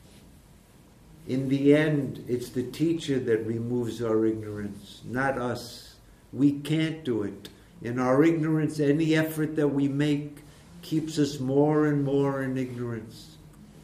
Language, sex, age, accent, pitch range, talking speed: English, male, 60-79, American, 120-145 Hz, 135 wpm